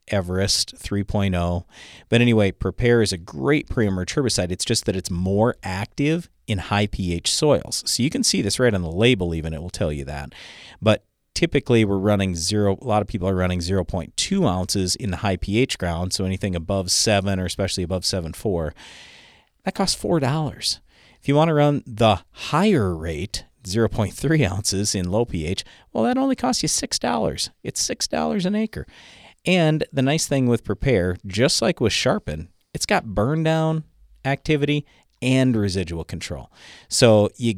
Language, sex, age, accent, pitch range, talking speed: English, male, 40-59, American, 95-125 Hz, 170 wpm